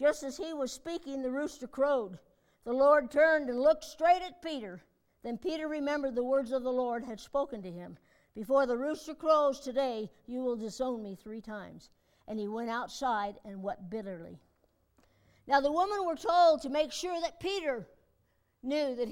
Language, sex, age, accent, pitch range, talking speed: English, female, 60-79, American, 205-290 Hz, 180 wpm